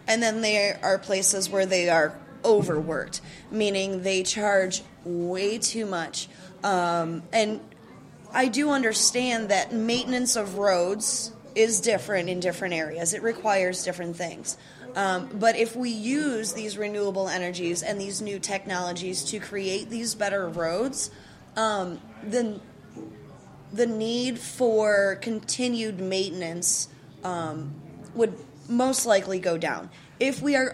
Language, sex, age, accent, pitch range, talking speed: English, female, 20-39, American, 175-220 Hz, 130 wpm